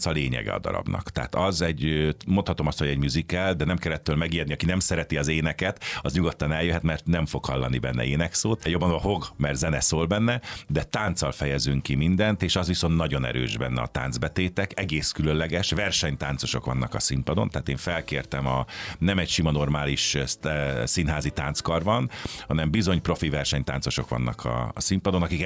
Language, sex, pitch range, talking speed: Hungarian, male, 70-90 Hz, 175 wpm